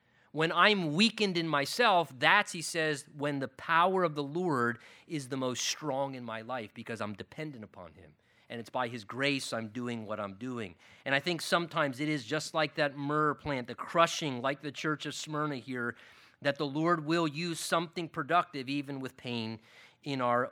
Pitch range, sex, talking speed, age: 140-180 Hz, male, 195 wpm, 30-49